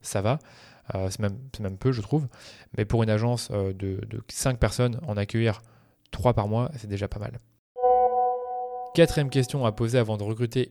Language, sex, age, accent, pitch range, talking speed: French, male, 20-39, French, 110-130 Hz, 185 wpm